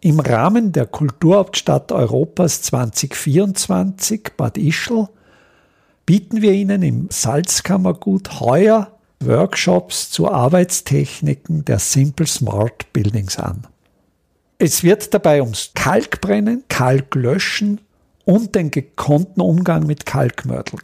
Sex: male